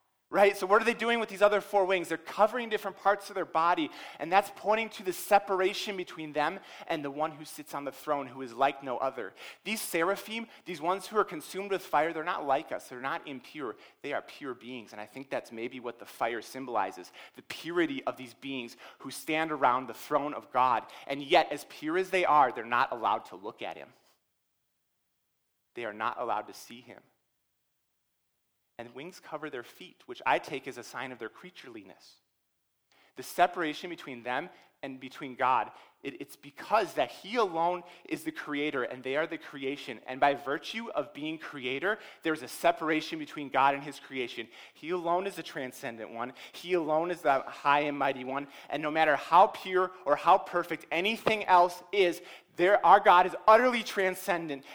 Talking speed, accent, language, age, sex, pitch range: 200 wpm, American, English, 30-49, male, 140-200 Hz